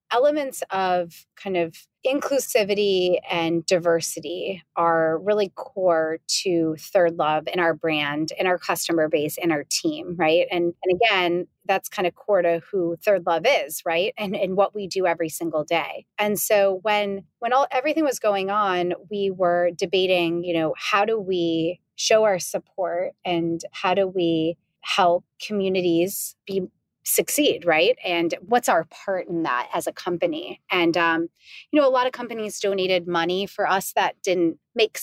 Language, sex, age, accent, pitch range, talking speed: English, female, 30-49, American, 165-200 Hz, 170 wpm